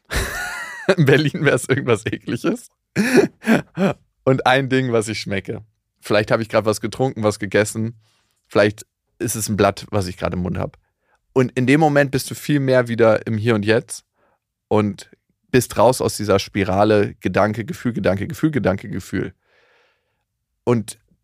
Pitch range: 105-140 Hz